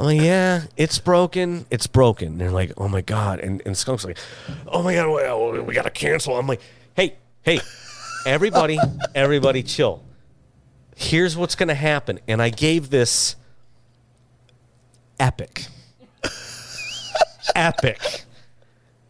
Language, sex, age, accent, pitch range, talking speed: English, male, 30-49, American, 110-130 Hz, 120 wpm